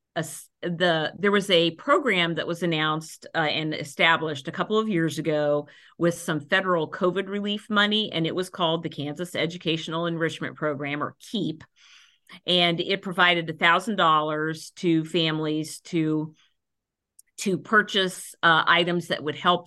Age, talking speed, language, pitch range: 50-69, 155 wpm, English, 155-180 Hz